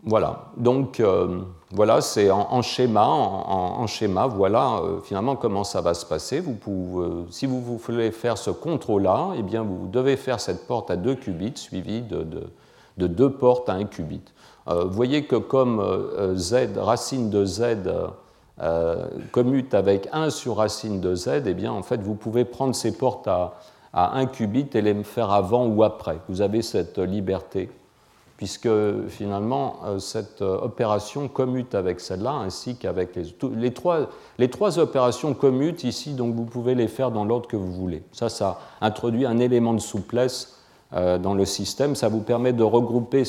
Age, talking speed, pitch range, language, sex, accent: 50-69, 180 wpm, 100-125 Hz, French, male, French